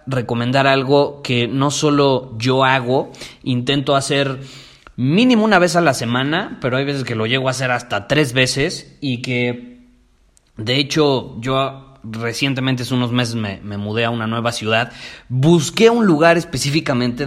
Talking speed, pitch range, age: 160 wpm, 115-140 Hz, 30-49